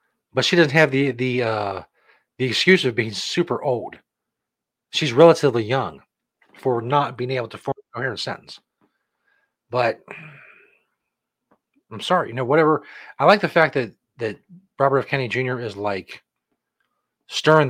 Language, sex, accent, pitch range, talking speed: English, male, American, 120-155 Hz, 150 wpm